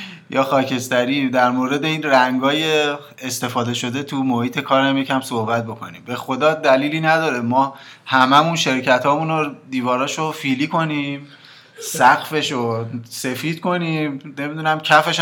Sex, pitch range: male, 125-155 Hz